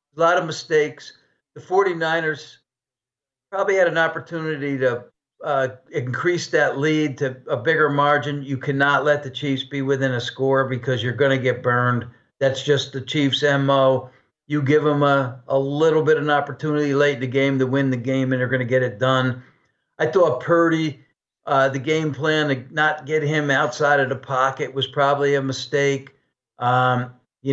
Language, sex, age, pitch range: English, male, 50-69, 130-150 Hz